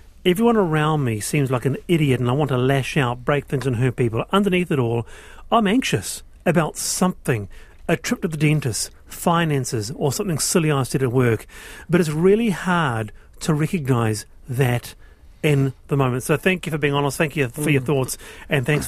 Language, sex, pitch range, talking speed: English, male, 130-165 Hz, 195 wpm